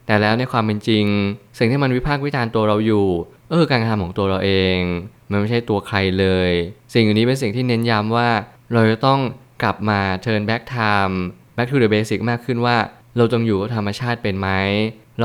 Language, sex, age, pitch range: Thai, male, 20-39, 100-120 Hz